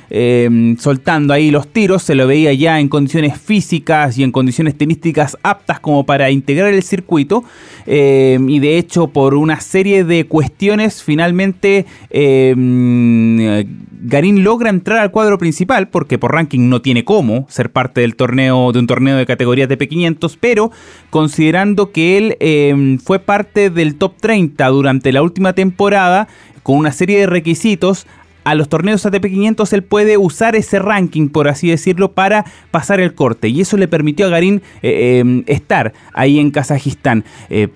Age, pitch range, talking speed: 20-39, 135-195 Hz, 165 wpm